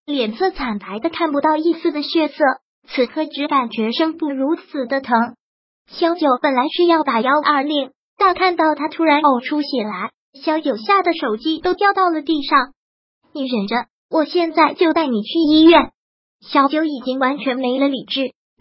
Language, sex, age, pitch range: Chinese, male, 20-39, 265-325 Hz